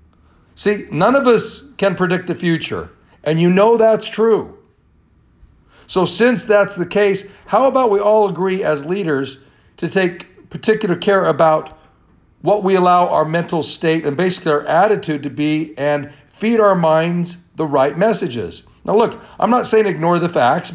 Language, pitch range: English, 160-205 Hz